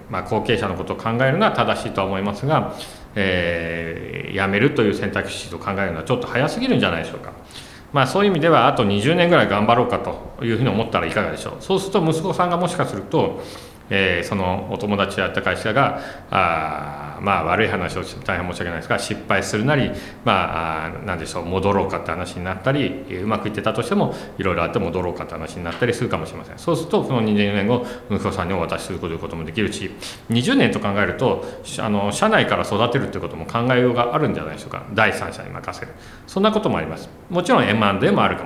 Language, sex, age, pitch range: Japanese, male, 40-59, 90-125 Hz